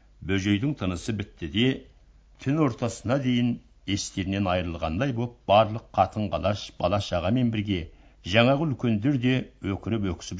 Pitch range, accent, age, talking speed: 90-125 Hz, Turkish, 60-79, 110 wpm